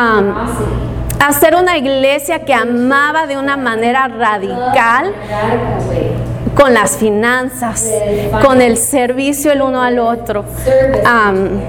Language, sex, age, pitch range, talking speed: English, female, 30-49, 210-270 Hz, 100 wpm